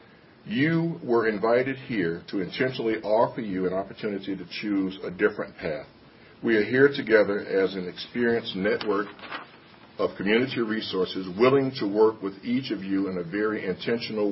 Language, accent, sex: English, American, male